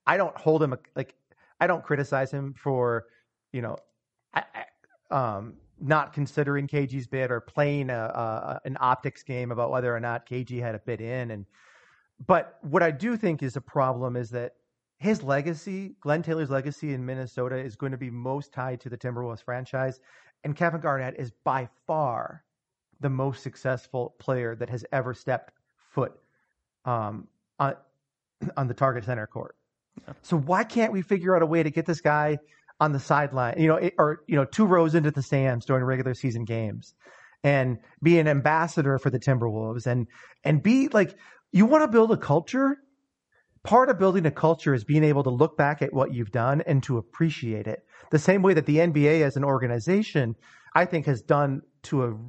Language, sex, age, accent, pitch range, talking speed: English, male, 40-59, American, 125-160 Hz, 190 wpm